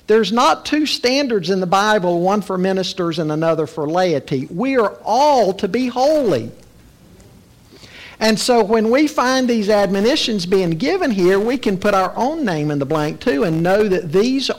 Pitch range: 165-240 Hz